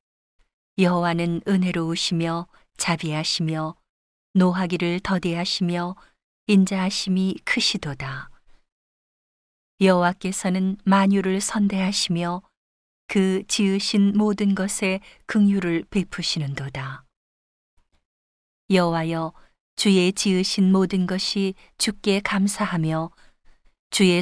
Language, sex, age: Korean, female, 40-59